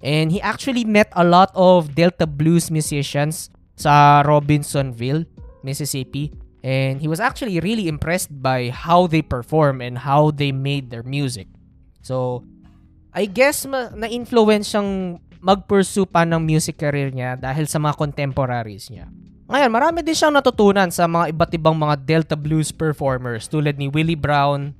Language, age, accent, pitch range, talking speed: Filipino, 20-39, native, 130-180 Hz, 145 wpm